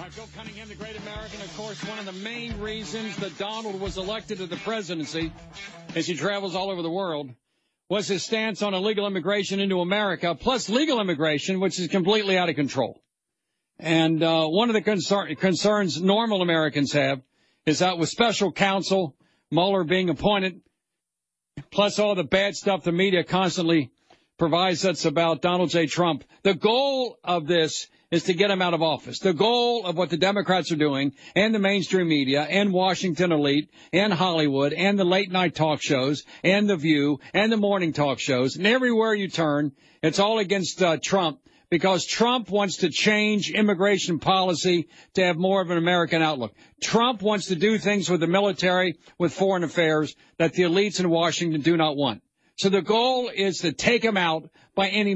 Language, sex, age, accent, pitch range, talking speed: English, male, 50-69, American, 165-200 Hz, 185 wpm